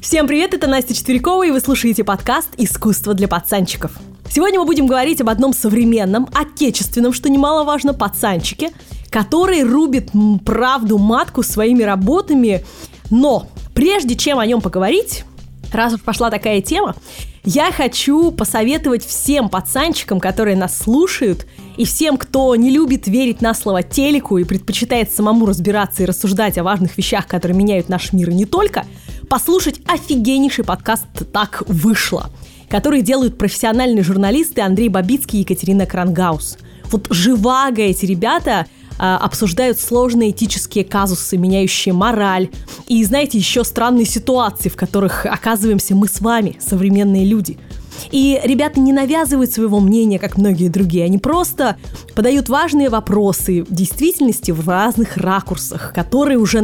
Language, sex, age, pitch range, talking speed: Russian, female, 20-39, 195-265 Hz, 140 wpm